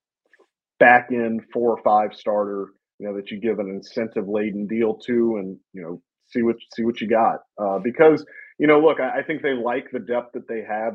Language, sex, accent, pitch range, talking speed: English, male, American, 105-125 Hz, 220 wpm